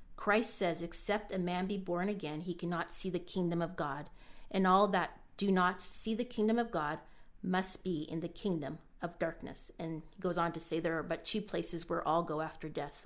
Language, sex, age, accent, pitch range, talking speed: English, female, 30-49, American, 165-190 Hz, 220 wpm